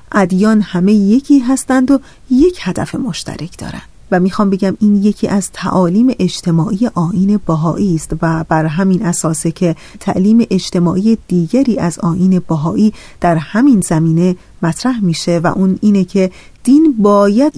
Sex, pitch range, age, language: female, 180-235 Hz, 30-49, Persian